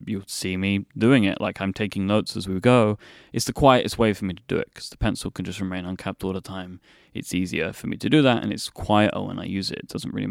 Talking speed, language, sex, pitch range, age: 280 wpm, English, male, 100-120 Hz, 20-39